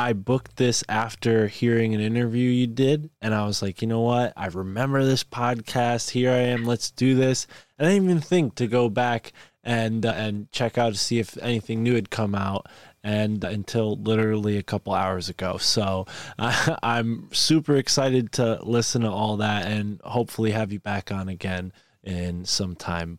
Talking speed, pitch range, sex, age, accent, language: 195 wpm, 100-120 Hz, male, 20-39, American, English